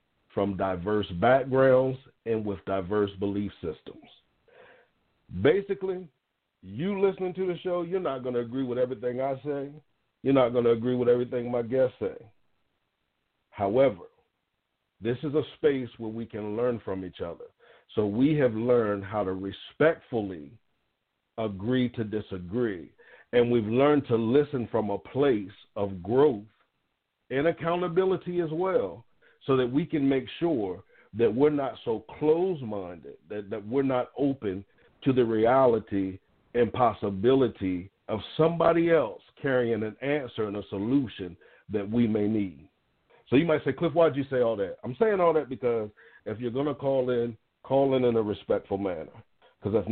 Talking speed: 160 wpm